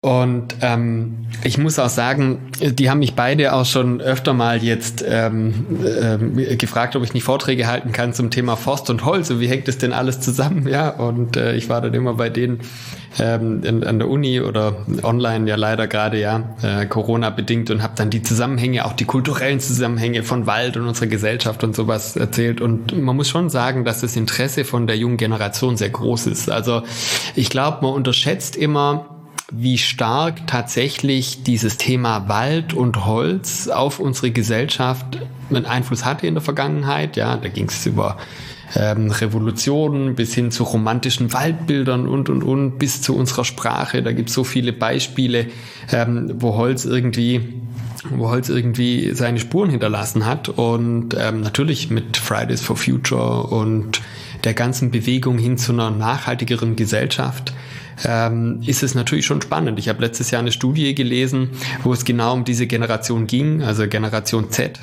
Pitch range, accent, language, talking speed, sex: 115-130 Hz, German, German, 175 wpm, male